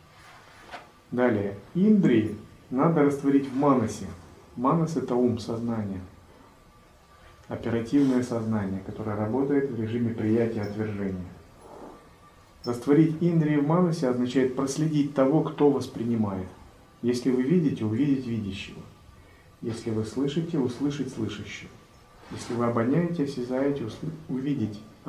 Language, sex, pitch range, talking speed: Russian, male, 105-140 Hz, 100 wpm